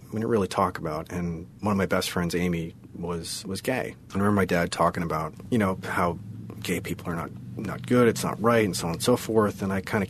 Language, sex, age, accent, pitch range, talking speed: English, male, 40-59, American, 85-105 Hz, 255 wpm